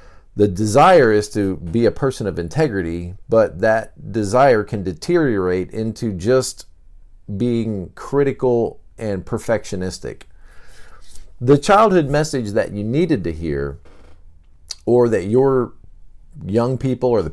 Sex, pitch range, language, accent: male, 90-125 Hz, English, American